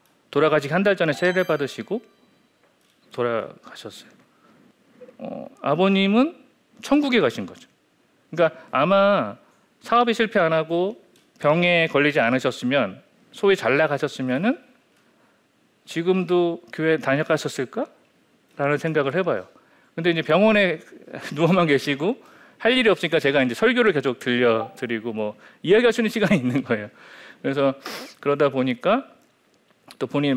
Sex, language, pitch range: male, Korean, 135-210 Hz